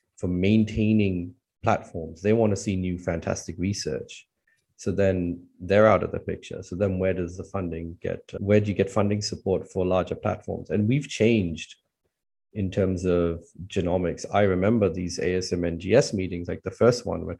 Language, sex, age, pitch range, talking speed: English, male, 30-49, 90-110 Hz, 175 wpm